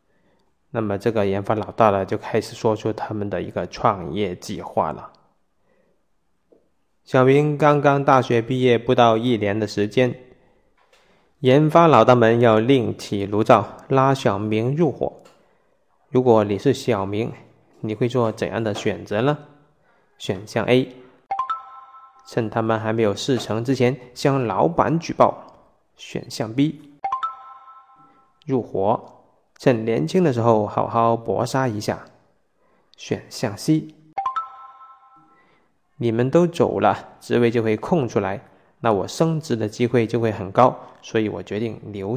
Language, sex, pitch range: Chinese, male, 110-160 Hz